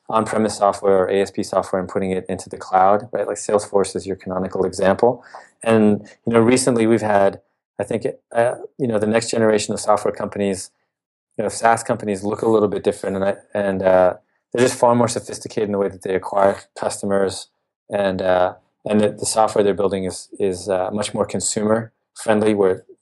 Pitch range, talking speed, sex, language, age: 95-110 Hz, 195 wpm, male, English, 20-39